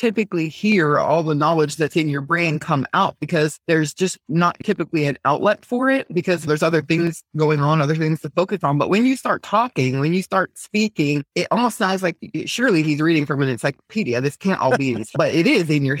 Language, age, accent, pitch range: English, 30-49, American, 150-185 Hz